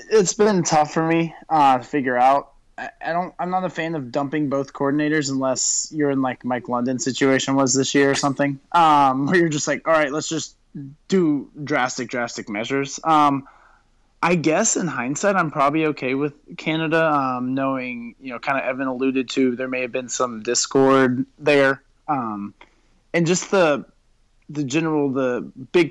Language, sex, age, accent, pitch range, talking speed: English, male, 20-39, American, 125-155 Hz, 185 wpm